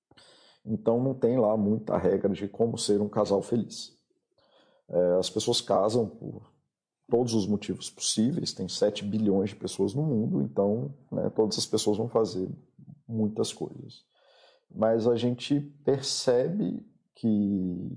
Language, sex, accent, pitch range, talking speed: Portuguese, male, Brazilian, 100-130 Hz, 135 wpm